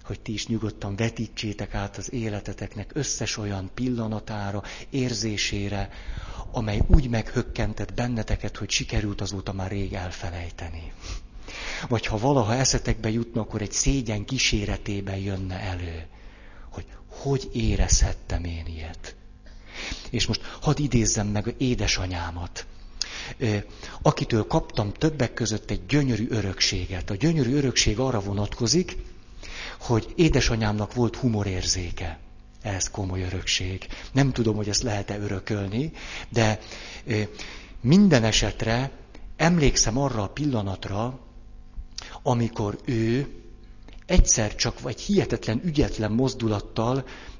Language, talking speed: Hungarian, 110 wpm